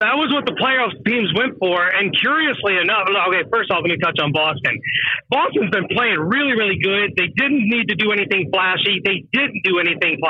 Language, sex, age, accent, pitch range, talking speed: English, male, 40-59, American, 180-230 Hz, 210 wpm